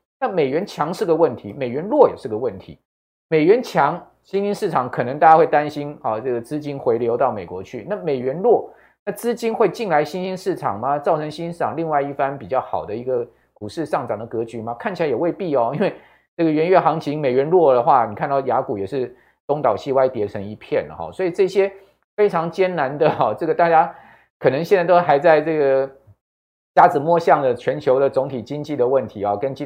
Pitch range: 120-160 Hz